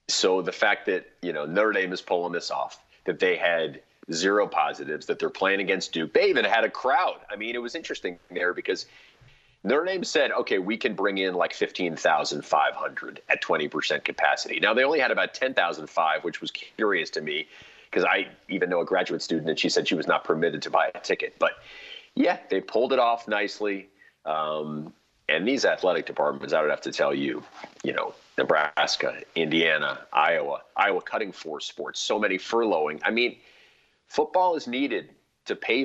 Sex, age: male, 40-59